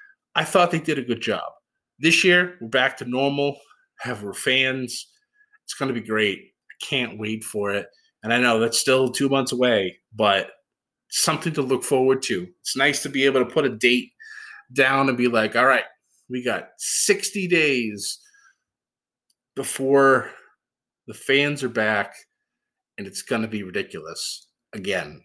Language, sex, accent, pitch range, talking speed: English, male, American, 125-190 Hz, 170 wpm